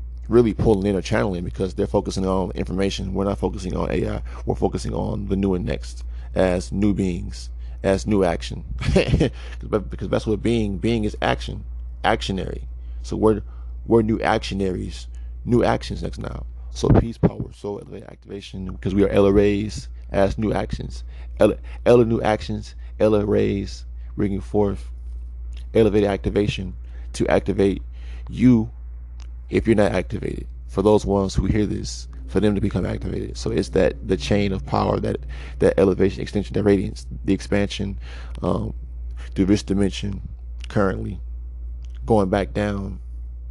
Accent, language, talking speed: American, English, 150 wpm